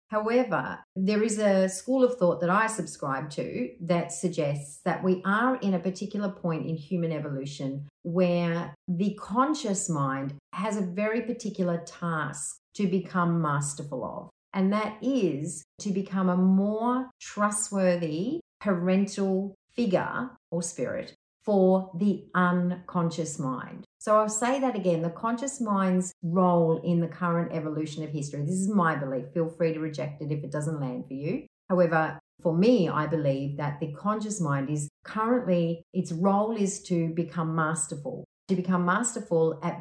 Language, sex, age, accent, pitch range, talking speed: English, female, 40-59, Australian, 160-200 Hz, 155 wpm